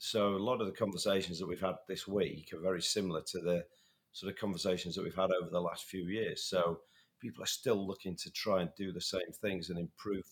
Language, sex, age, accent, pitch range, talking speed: English, male, 40-59, British, 90-105 Hz, 240 wpm